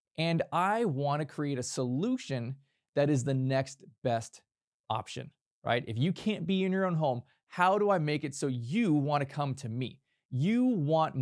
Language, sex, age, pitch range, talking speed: English, male, 20-39, 130-165 Hz, 180 wpm